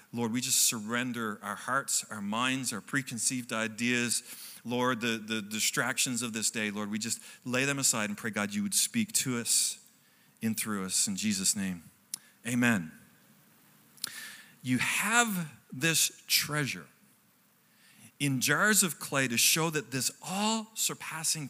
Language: English